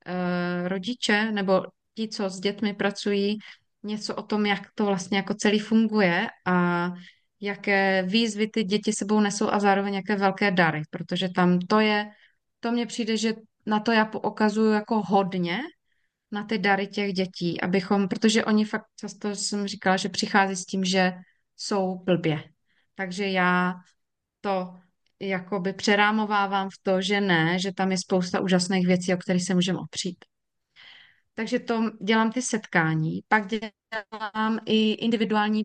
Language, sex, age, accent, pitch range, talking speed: Czech, female, 20-39, native, 185-215 Hz, 150 wpm